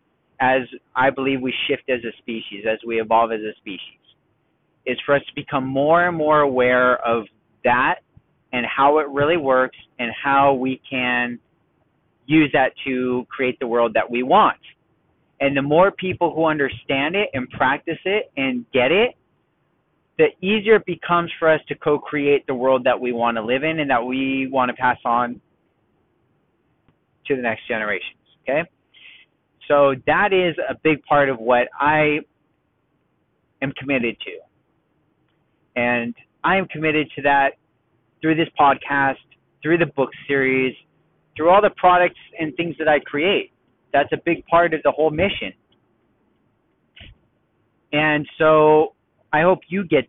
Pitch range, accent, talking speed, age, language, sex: 125-155 Hz, American, 155 wpm, 30-49, English, male